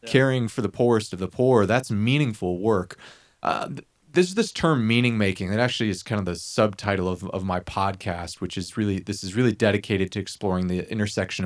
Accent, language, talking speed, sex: American, English, 195 wpm, male